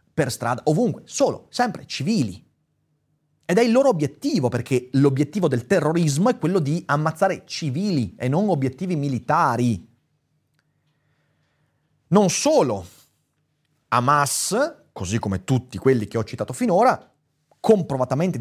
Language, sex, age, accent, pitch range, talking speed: Italian, male, 30-49, native, 115-160 Hz, 115 wpm